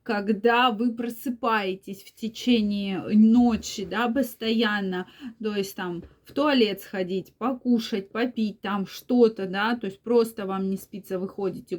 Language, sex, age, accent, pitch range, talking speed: Russian, female, 20-39, native, 200-250 Hz, 130 wpm